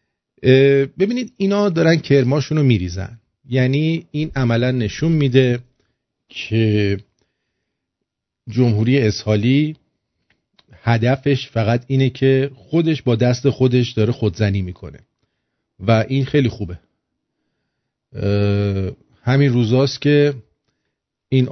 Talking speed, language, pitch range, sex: 90 wpm, English, 110-140 Hz, male